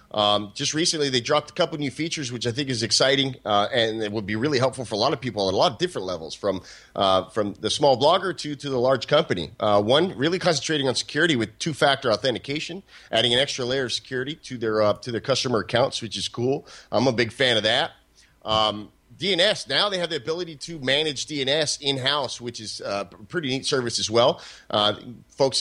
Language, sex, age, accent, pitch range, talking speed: English, male, 30-49, American, 110-145 Hz, 225 wpm